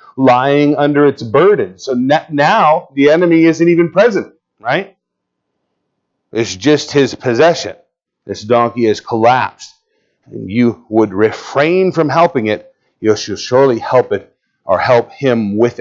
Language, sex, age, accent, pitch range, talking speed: English, male, 40-59, American, 110-160 Hz, 135 wpm